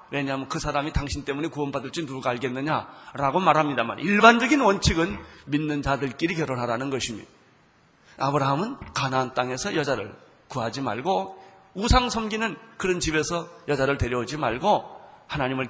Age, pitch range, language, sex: 30-49, 130-160 Hz, Korean, male